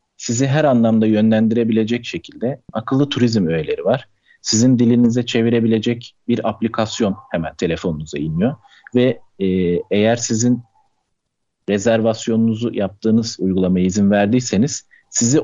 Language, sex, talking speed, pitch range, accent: Turkish, male, 105 wpm, 105-130 Hz, native